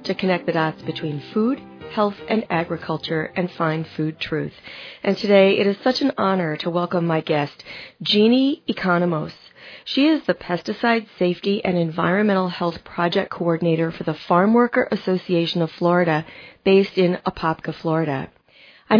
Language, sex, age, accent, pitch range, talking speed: English, female, 40-59, American, 170-210 Hz, 150 wpm